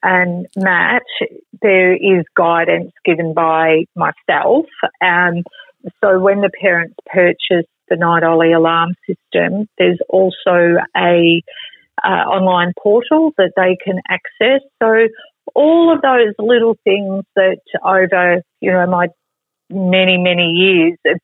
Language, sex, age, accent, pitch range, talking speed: English, female, 40-59, Australian, 170-205 Hz, 125 wpm